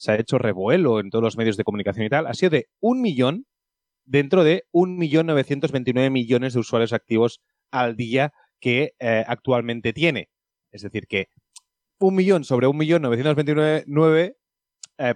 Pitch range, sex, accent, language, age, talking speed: 110-155 Hz, male, Spanish, Spanish, 30-49, 160 wpm